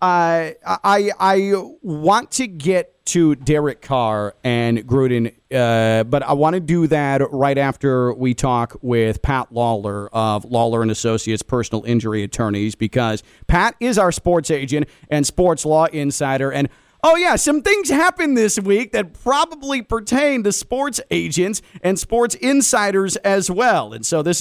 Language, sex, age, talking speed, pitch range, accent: English, male, 40-59, 160 wpm, 135-195 Hz, American